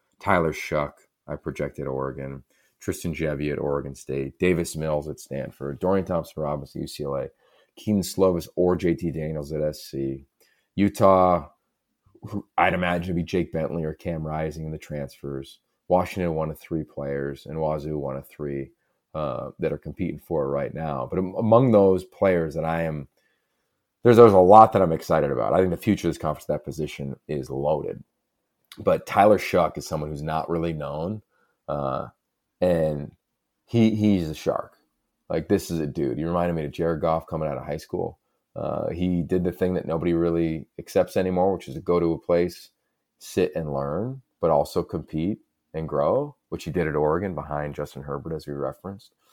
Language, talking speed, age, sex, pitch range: English, 180 wpm, 30-49, male, 75-95 Hz